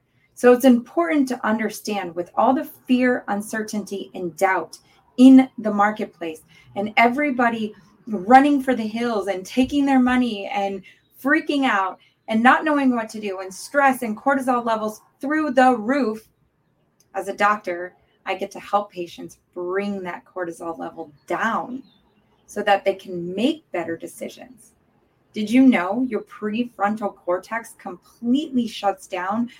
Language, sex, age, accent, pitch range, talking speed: English, female, 20-39, American, 190-250 Hz, 145 wpm